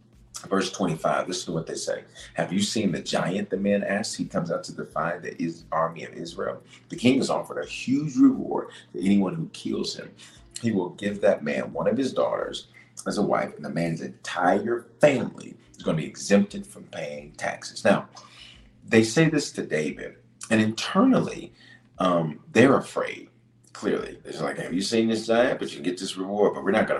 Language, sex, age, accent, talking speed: English, male, 40-59, American, 200 wpm